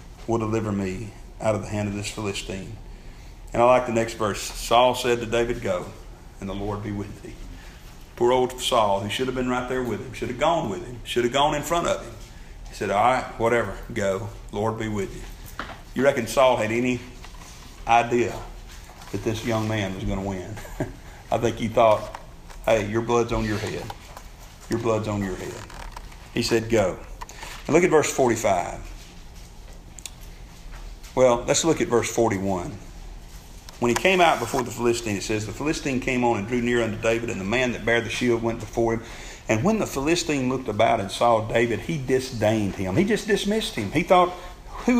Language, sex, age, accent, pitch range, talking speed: English, male, 40-59, American, 105-130 Hz, 200 wpm